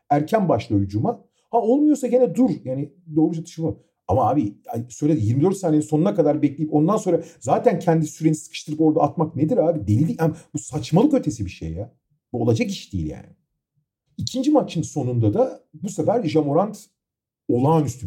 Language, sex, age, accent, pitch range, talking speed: Turkish, male, 40-59, native, 120-190 Hz, 165 wpm